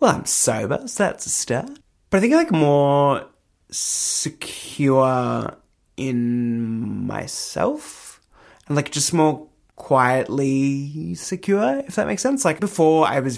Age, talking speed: 20-39, 135 wpm